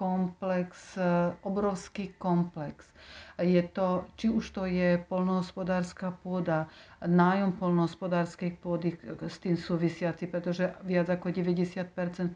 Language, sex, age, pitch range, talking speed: Slovak, female, 50-69, 165-185 Hz, 100 wpm